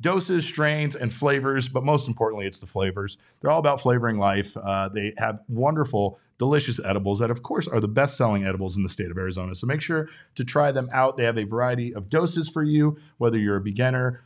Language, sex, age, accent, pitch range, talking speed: English, male, 40-59, American, 105-130 Hz, 220 wpm